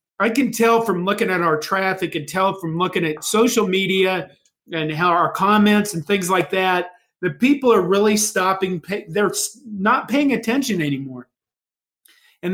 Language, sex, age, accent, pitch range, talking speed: English, male, 40-59, American, 160-210 Hz, 165 wpm